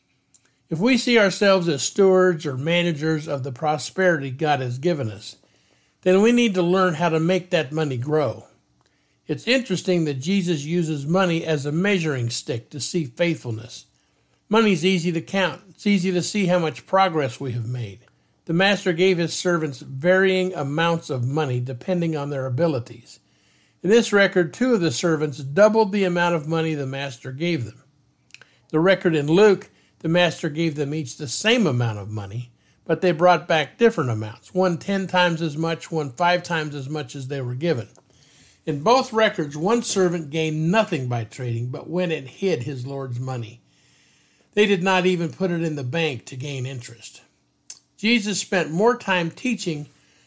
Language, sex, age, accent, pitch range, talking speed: English, male, 60-79, American, 140-185 Hz, 180 wpm